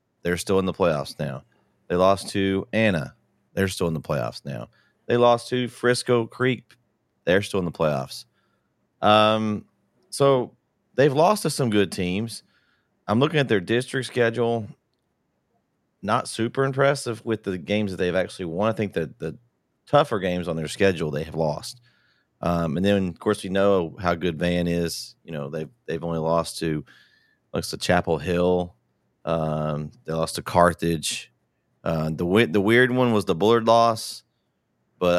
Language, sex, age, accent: English, male, 30-49, American